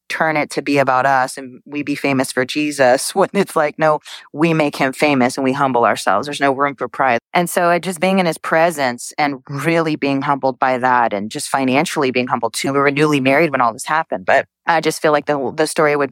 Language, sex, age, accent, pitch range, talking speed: English, female, 30-49, American, 135-155 Hz, 245 wpm